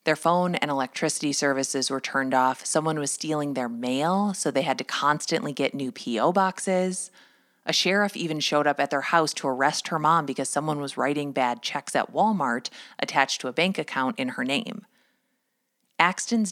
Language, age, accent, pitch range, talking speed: English, 30-49, American, 140-200 Hz, 185 wpm